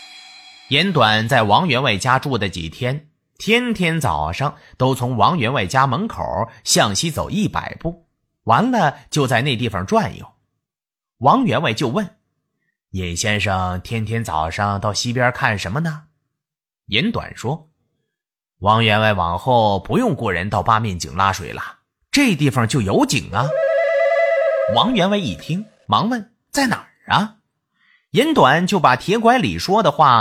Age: 30-49